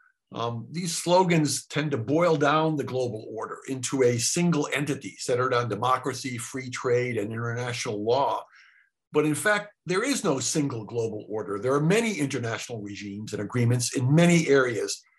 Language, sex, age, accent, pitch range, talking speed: English, male, 50-69, American, 125-165 Hz, 160 wpm